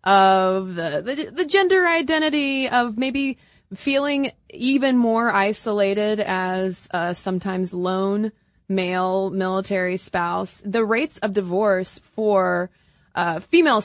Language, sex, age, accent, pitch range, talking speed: English, female, 20-39, American, 185-240 Hz, 115 wpm